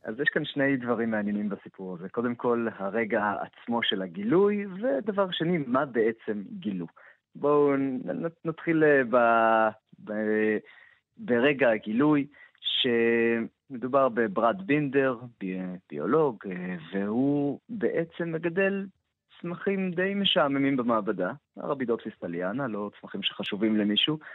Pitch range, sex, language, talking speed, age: 115-170 Hz, male, Hebrew, 110 wpm, 30-49